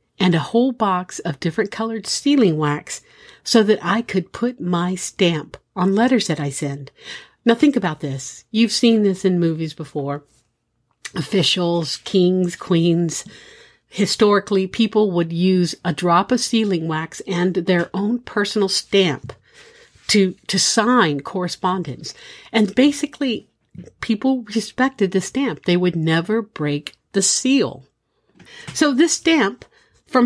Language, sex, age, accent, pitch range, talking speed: English, female, 50-69, American, 160-220 Hz, 135 wpm